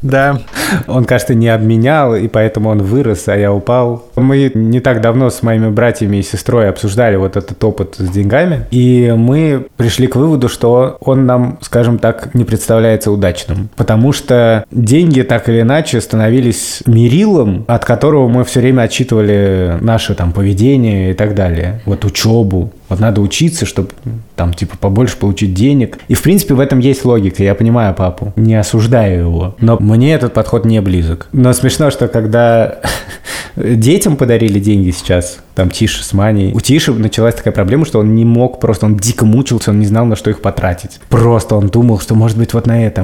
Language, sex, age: Russian, male, 20-39